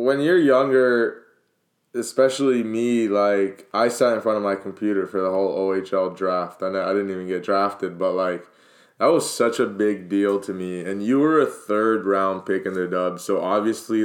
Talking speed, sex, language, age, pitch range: 190 wpm, male, English, 20-39, 100-130 Hz